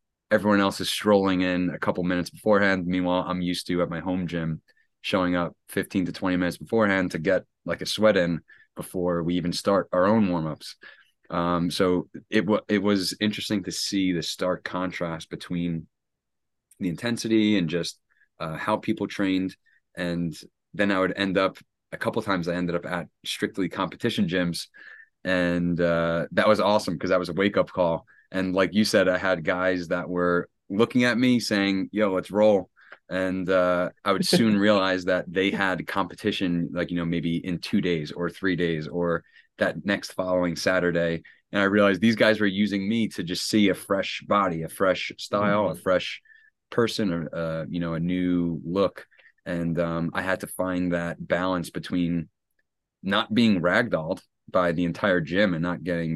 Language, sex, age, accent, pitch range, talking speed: English, male, 30-49, American, 85-100 Hz, 185 wpm